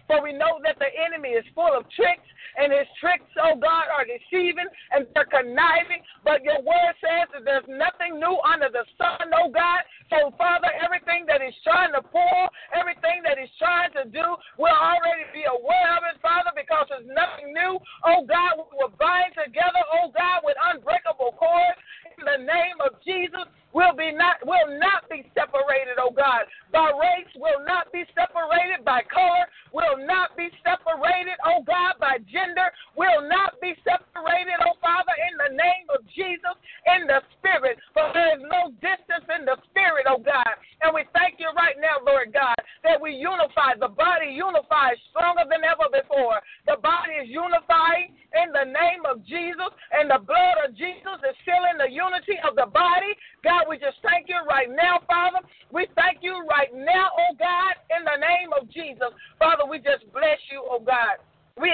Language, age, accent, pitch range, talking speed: English, 40-59, American, 295-350 Hz, 190 wpm